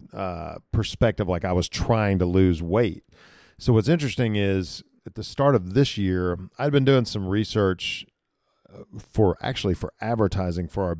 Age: 40-59